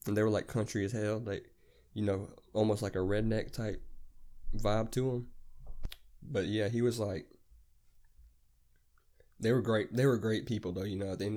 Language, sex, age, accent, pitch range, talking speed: English, male, 20-39, American, 95-110 Hz, 190 wpm